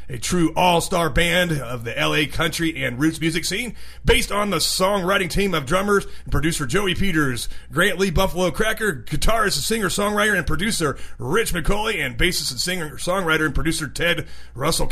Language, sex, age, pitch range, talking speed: English, male, 30-49, 140-205 Hz, 170 wpm